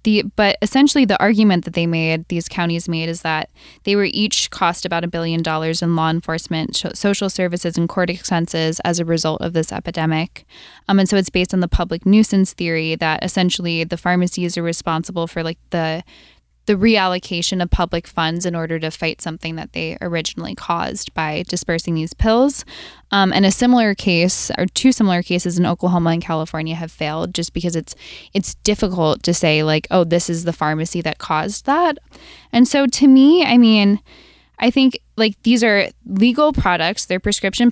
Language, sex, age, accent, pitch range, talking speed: English, female, 10-29, American, 165-200 Hz, 185 wpm